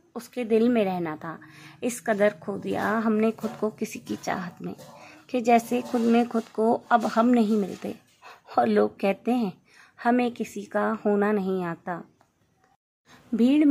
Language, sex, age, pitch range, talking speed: Hindi, female, 20-39, 205-240 Hz, 160 wpm